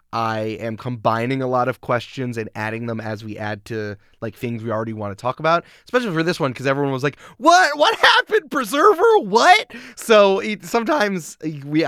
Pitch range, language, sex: 115-165 Hz, English, male